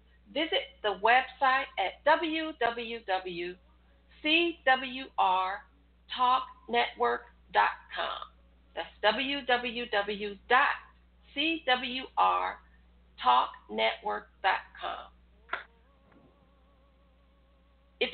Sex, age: female, 50-69